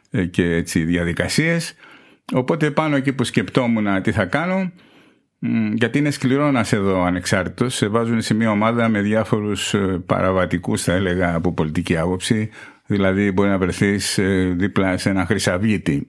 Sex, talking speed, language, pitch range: male, 150 wpm, Greek, 90-115 Hz